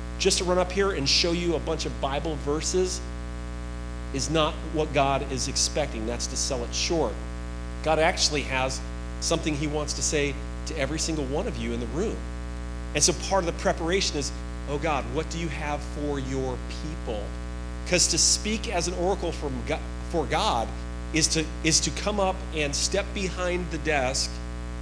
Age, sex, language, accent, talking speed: 40-59, male, English, American, 180 wpm